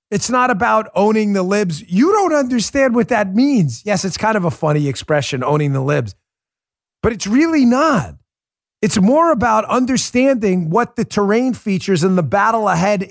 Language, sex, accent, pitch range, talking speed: English, male, American, 195-270 Hz, 175 wpm